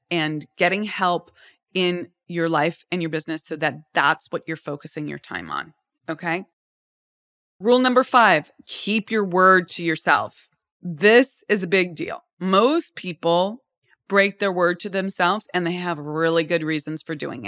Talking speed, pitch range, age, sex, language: 160 wpm, 170-210 Hz, 20-39, female, English